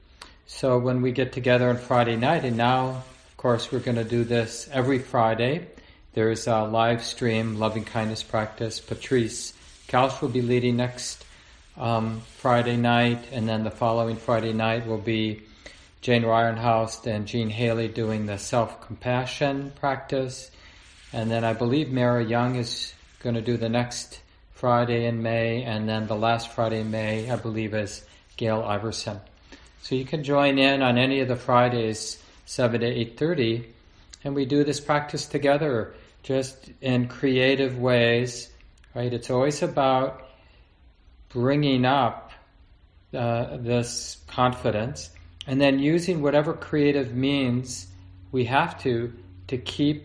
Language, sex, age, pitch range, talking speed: English, male, 40-59, 110-130 Hz, 145 wpm